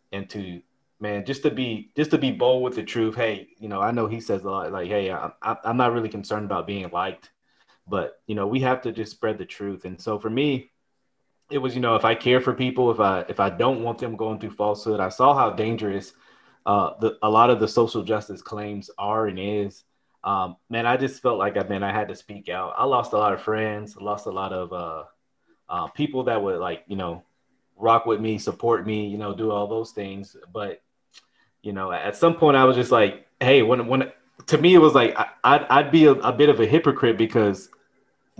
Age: 20-39